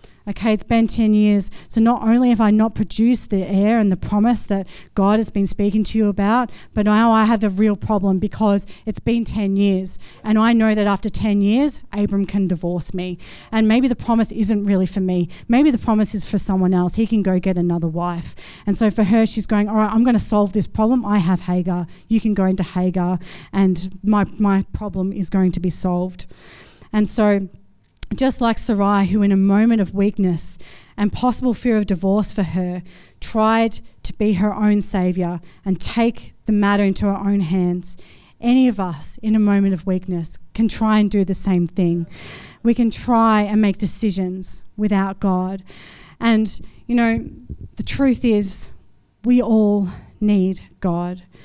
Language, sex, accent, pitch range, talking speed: English, female, Australian, 195-225 Hz, 190 wpm